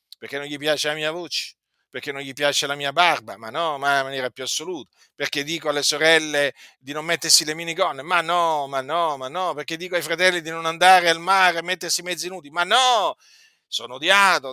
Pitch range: 130-185 Hz